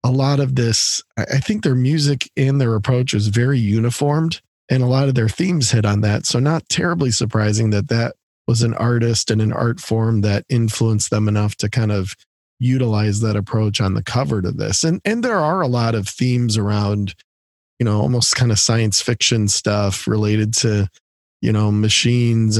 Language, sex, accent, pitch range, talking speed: English, male, American, 105-125 Hz, 195 wpm